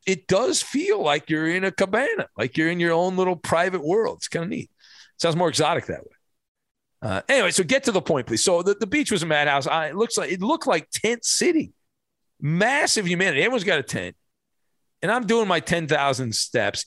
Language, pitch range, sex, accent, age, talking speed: English, 130-190 Hz, male, American, 40-59, 215 wpm